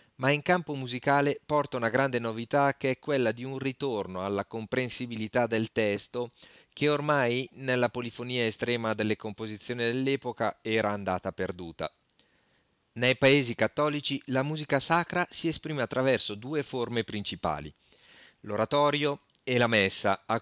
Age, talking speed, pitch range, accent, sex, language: 40-59, 135 wpm, 105-135 Hz, native, male, Italian